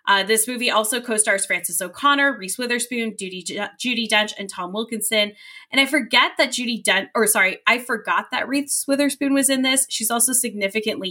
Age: 10-29